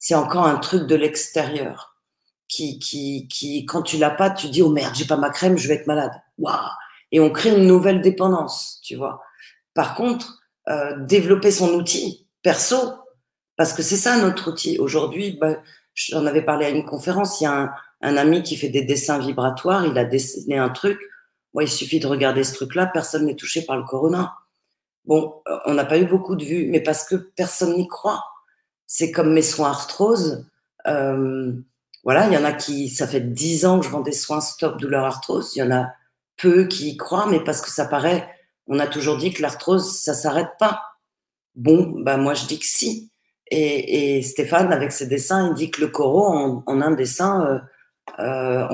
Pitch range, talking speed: 140-185 Hz, 210 wpm